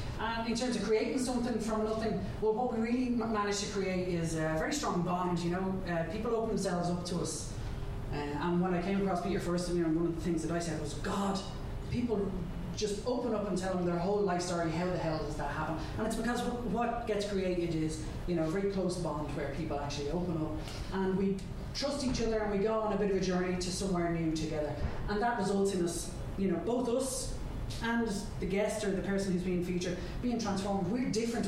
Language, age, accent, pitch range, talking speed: English, 20-39, Irish, 160-205 Hz, 240 wpm